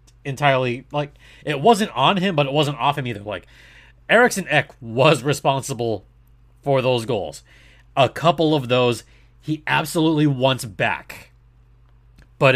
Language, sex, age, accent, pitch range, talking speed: English, male, 30-49, American, 120-155 Hz, 140 wpm